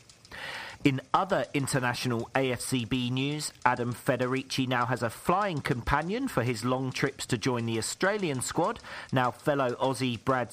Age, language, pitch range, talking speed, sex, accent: 40-59, English, 120-165 Hz, 140 wpm, male, British